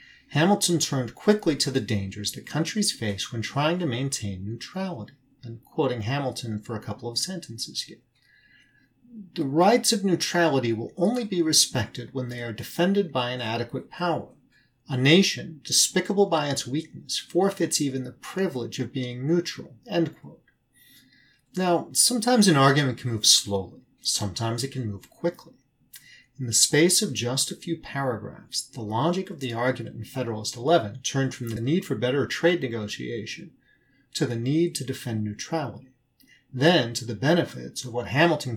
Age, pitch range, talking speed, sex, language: 40-59, 115-165 Hz, 160 wpm, male, English